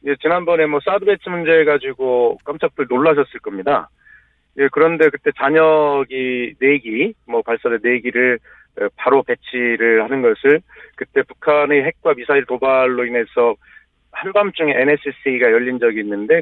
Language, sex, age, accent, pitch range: Korean, male, 40-59, native, 120-160 Hz